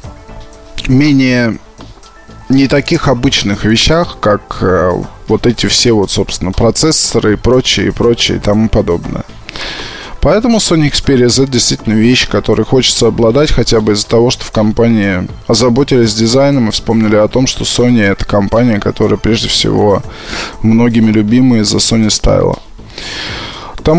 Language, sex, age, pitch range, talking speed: Russian, male, 20-39, 105-130 Hz, 140 wpm